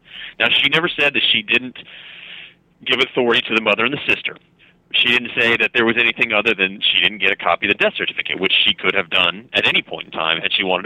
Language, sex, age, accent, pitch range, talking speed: English, male, 30-49, American, 105-160 Hz, 255 wpm